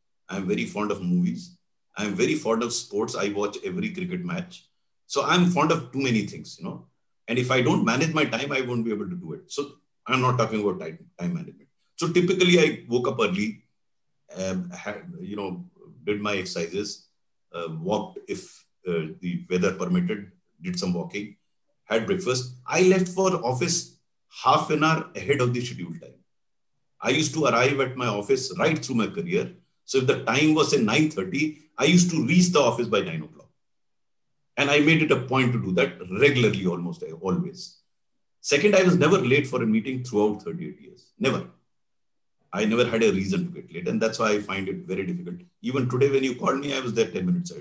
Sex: male